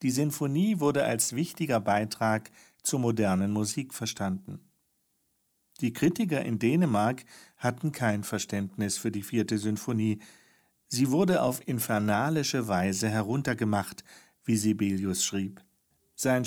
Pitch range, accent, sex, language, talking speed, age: 110-150 Hz, German, male, German, 115 wpm, 50-69